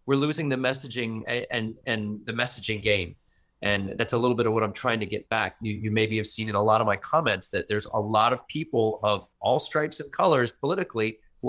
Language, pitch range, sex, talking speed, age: English, 105-125 Hz, male, 240 wpm, 30-49